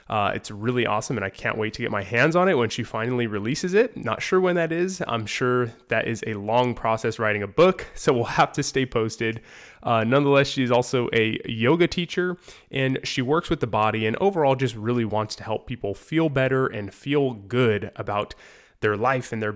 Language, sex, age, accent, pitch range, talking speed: English, male, 20-39, American, 110-135 Hz, 220 wpm